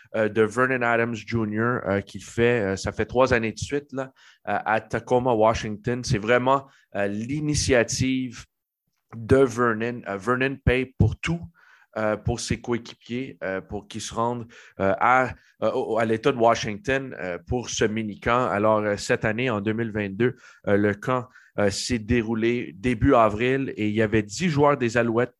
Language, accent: French, Canadian